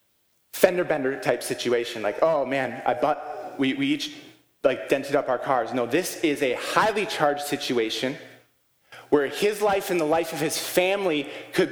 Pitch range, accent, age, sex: 155-215 Hz, American, 30-49, male